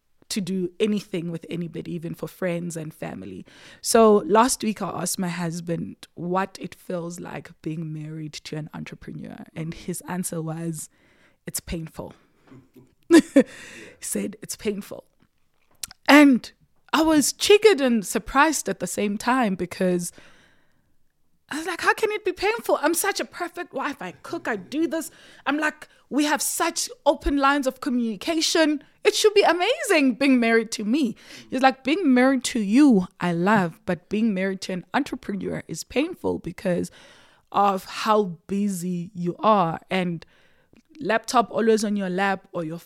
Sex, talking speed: female, 155 wpm